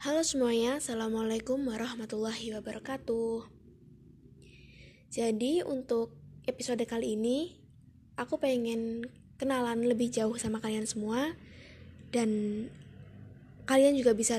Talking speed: 90 wpm